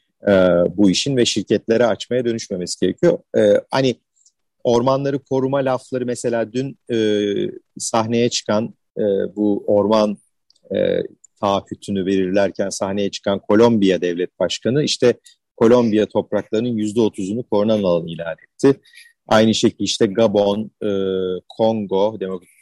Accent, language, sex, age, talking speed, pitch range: native, Turkish, male, 40-59, 115 wpm, 95-130 Hz